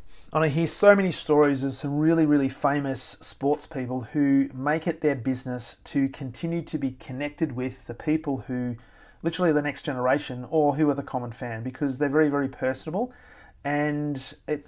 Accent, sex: Australian, male